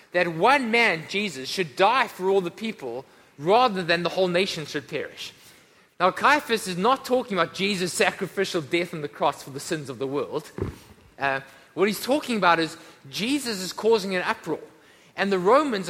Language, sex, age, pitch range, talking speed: English, male, 20-39, 170-235 Hz, 185 wpm